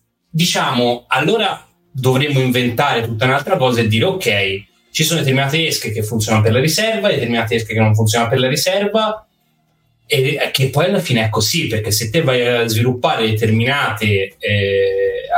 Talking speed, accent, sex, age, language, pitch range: 170 wpm, native, male, 20-39, Italian, 110-140 Hz